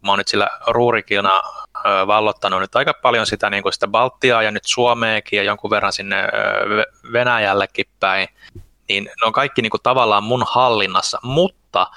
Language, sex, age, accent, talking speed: Finnish, male, 20-39, native, 165 wpm